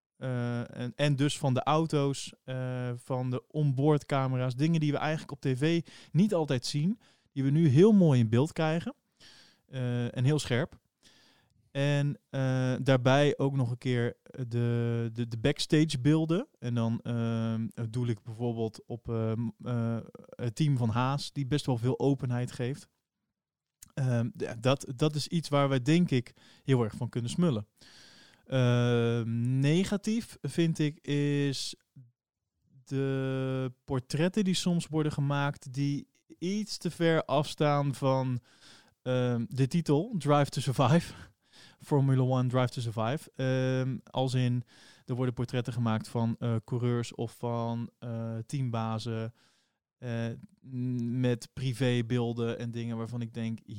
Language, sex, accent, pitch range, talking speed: Dutch, male, Dutch, 120-145 Hz, 140 wpm